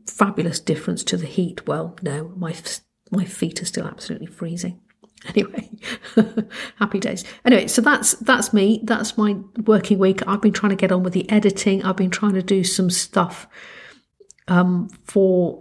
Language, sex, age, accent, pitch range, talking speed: English, female, 50-69, British, 180-215 Hz, 170 wpm